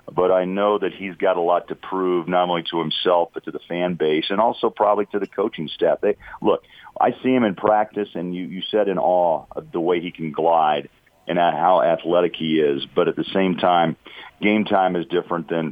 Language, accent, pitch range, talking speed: English, American, 80-100 Hz, 225 wpm